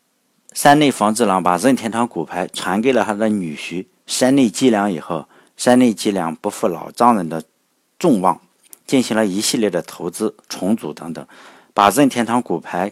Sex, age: male, 50-69